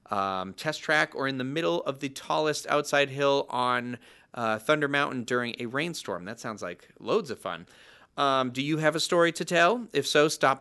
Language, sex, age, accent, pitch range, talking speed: English, male, 30-49, American, 120-155 Hz, 205 wpm